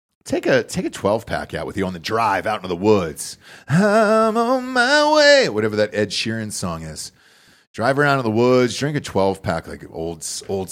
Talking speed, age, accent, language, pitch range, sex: 200 wpm, 40-59, American, English, 105-140 Hz, male